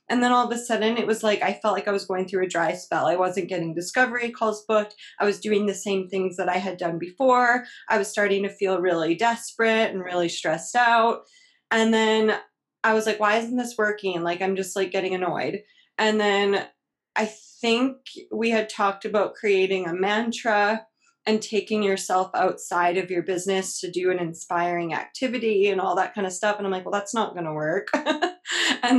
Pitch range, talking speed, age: 190-230 Hz, 205 wpm, 20-39